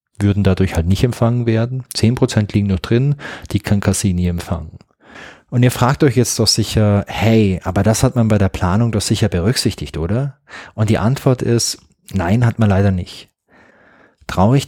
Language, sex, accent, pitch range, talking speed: German, male, German, 95-115 Hz, 175 wpm